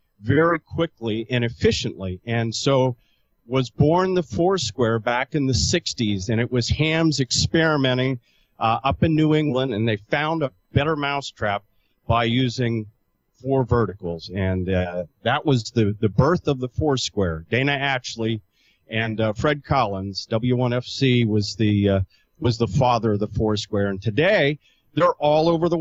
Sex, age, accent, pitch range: male, 40-59, American, 105-140 Hz